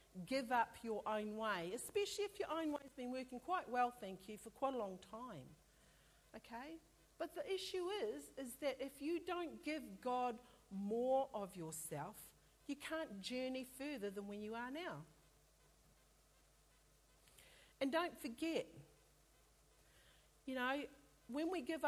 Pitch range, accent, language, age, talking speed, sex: 200-275 Hz, Australian, English, 50-69, 145 wpm, female